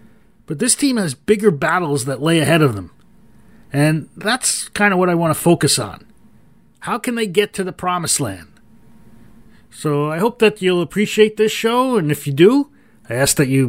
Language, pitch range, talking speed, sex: English, 140-180 Hz, 195 wpm, male